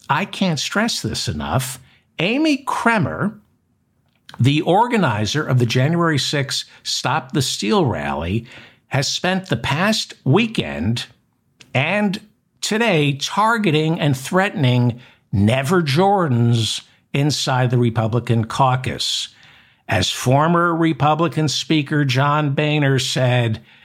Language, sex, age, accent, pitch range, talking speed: English, male, 60-79, American, 120-160 Hz, 100 wpm